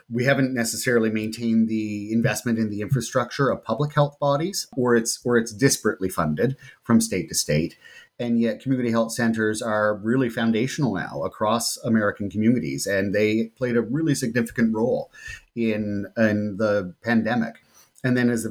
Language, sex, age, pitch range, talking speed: English, male, 30-49, 110-130 Hz, 160 wpm